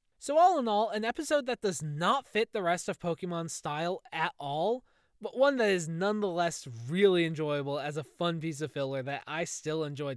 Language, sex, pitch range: English, male, 150-215 Hz